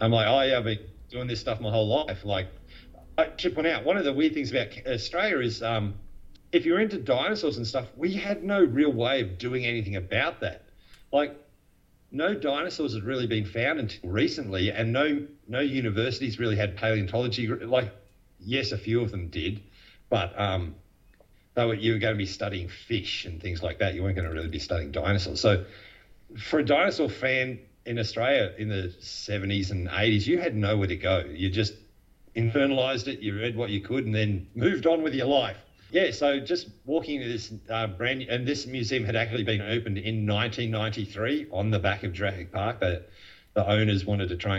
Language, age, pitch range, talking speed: English, 50-69, 95-125 Hz, 200 wpm